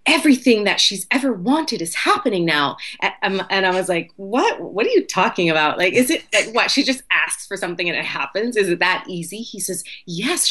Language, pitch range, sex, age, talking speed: English, 185-280 Hz, female, 30-49, 215 wpm